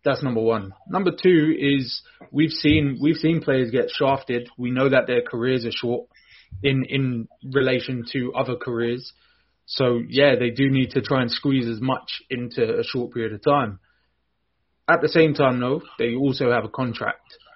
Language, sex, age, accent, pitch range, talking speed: English, male, 20-39, British, 120-150 Hz, 180 wpm